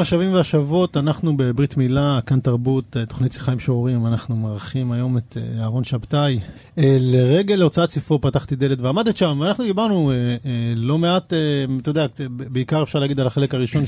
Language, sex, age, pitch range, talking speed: Hebrew, male, 40-59, 125-155 Hz, 155 wpm